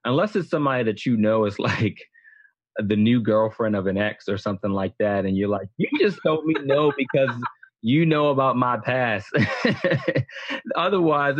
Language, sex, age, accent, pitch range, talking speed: English, male, 20-39, American, 110-135 Hz, 175 wpm